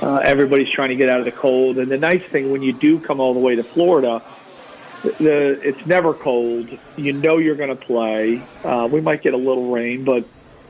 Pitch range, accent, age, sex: 125-135 Hz, American, 50-69, male